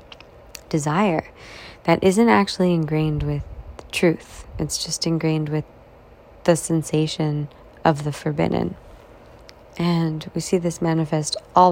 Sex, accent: female, American